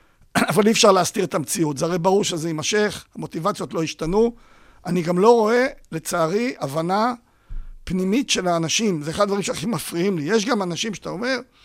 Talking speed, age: 175 wpm, 50-69